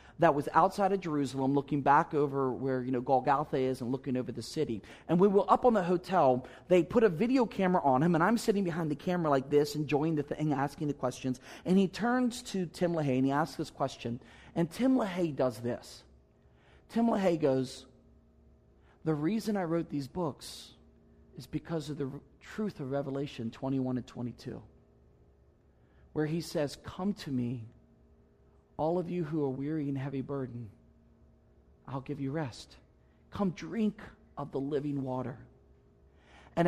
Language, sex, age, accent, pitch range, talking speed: English, male, 40-59, American, 125-170 Hz, 175 wpm